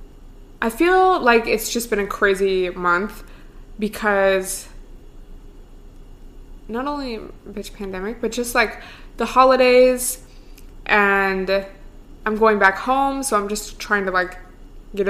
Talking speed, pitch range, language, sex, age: 125 wpm, 190-230 Hz, English, female, 20-39